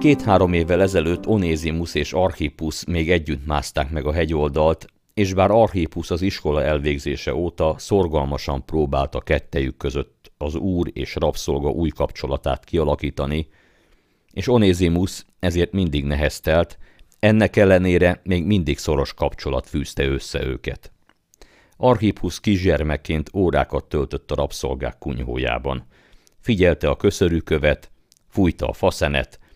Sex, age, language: male, 50-69, Hungarian